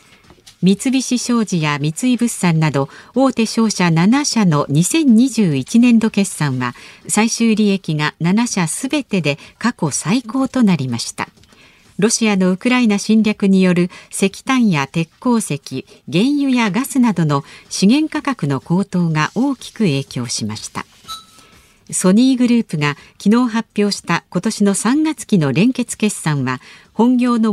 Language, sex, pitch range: Japanese, female, 160-240 Hz